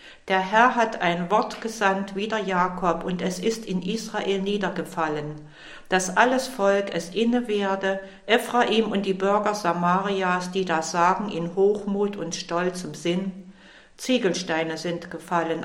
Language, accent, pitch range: German, German, 175-210 Hz